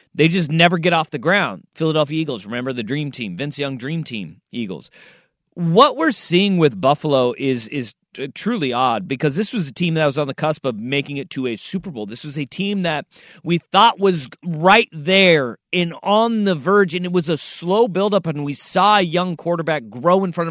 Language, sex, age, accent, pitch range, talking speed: English, male, 30-49, American, 135-185 Hz, 215 wpm